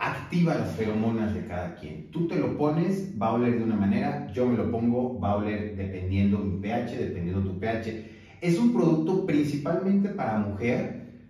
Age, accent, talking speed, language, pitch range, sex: 30-49, Mexican, 185 wpm, Spanish, 100-145 Hz, male